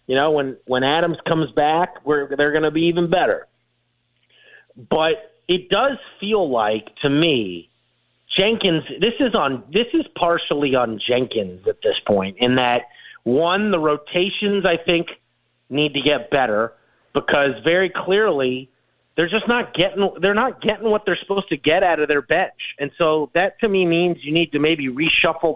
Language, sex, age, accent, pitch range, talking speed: English, male, 30-49, American, 135-180 Hz, 165 wpm